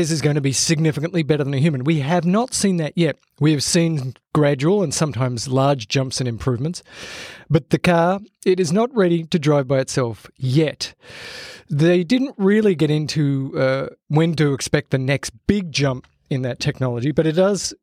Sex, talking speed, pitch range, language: male, 190 wpm, 135-175 Hz, English